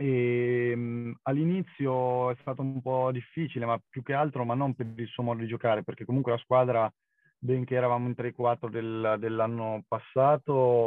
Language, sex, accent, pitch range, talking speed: Italian, male, native, 110-125 Hz, 170 wpm